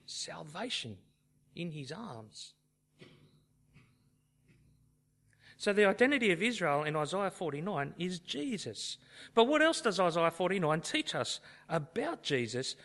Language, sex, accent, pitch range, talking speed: English, male, Australian, 140-220 Hz, 110 wpm